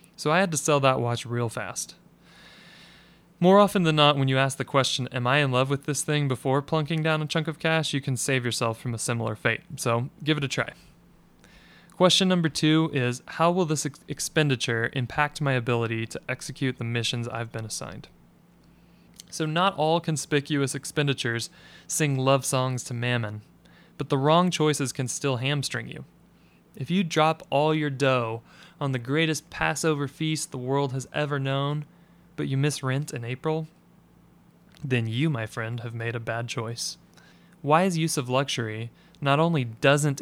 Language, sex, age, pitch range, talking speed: English, male, 20-39, 125-155 Hz, 180 wpm